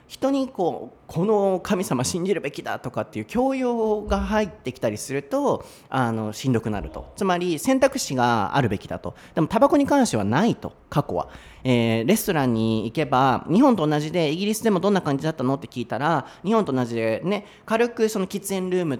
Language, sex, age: Japanese, male, 30-49